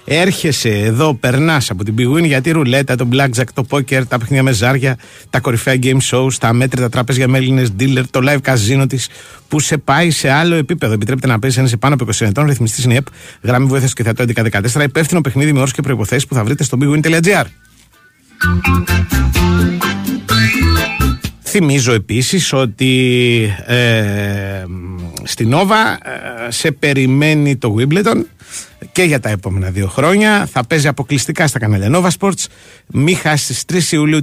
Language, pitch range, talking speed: Greek, 105-145 Hz, 165 wpm